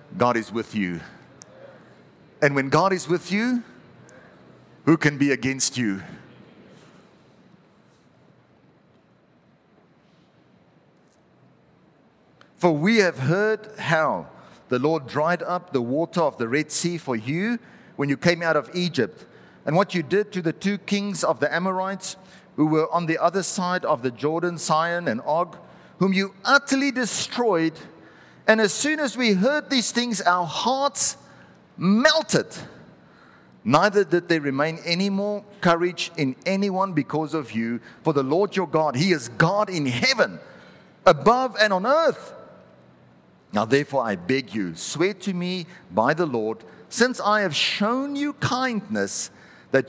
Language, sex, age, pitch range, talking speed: English, male, 50-69, 145-200 Hz, 145 wpm